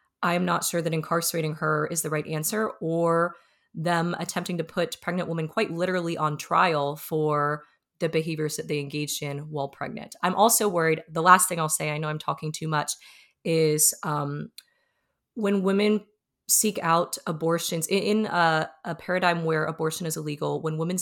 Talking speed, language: 175 wpm, English